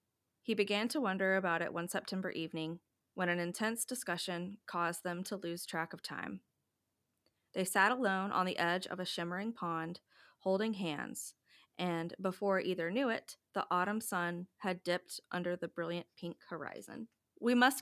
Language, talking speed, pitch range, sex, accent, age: English, 165 wpm, 175-220 Hz, female, American, 20-39